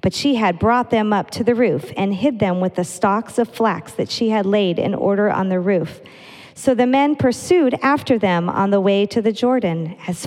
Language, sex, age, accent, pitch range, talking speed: English, female, 40-59, American, 180-220 Hz, 230 wpm